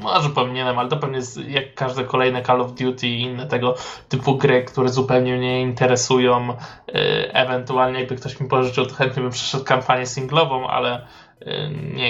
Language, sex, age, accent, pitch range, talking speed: Polish, male, 20-39, native, 125-140 Hz, 185 wpm